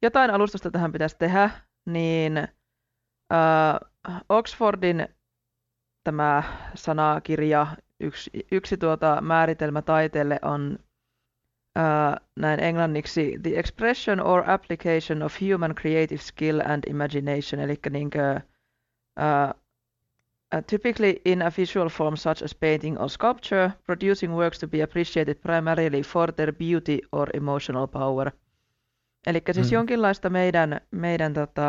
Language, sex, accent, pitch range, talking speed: Finnish, female, native, 140-170 Hz, 105 wpm